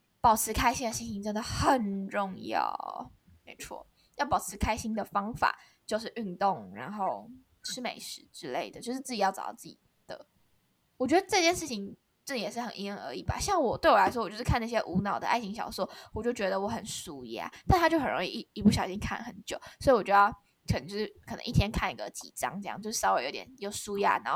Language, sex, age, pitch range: Chinese, female, 10-29, 200-260 Hz